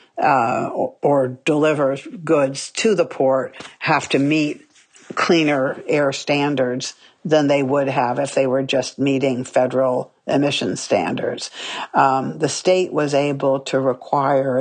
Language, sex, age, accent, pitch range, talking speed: English, female, 60-79, American, 135-150 Hz, 135 wpm